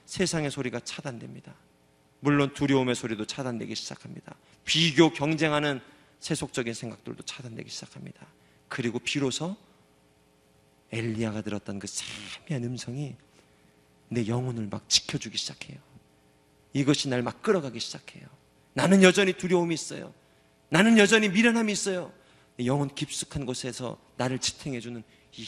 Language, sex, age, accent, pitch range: Korean, male, 40-59, native, 105-165 Hz